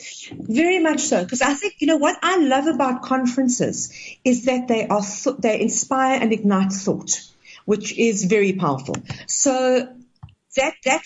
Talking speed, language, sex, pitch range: 155 wpm, English, female, 210-275 Hz